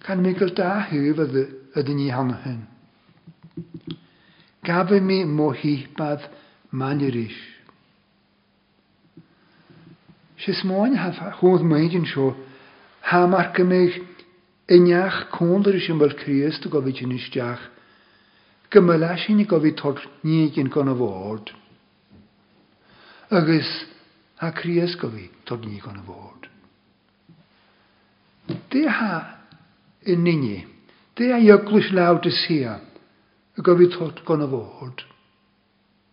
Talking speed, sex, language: 80 wpm, male, English